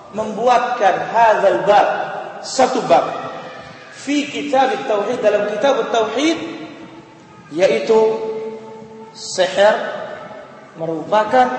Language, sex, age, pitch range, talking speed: Indonesian, male, 40-59, 195-245 Hz, 65 wpm